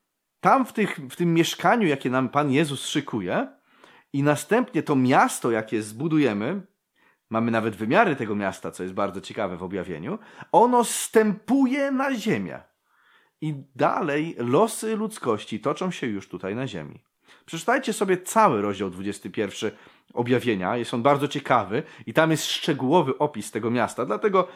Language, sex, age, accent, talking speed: Polish, male, 30-49, native, 145 wpm